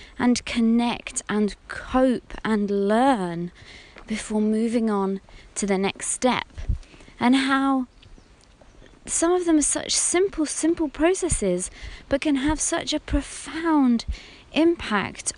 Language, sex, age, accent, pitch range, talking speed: English, female, 20-39, British, 230-310 Hz, 115 wpm